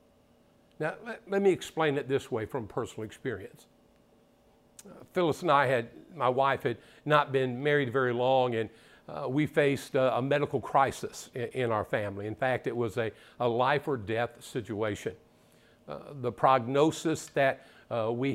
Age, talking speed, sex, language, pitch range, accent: 50-69, 170 wpm, male, English, 120-150 Hz, American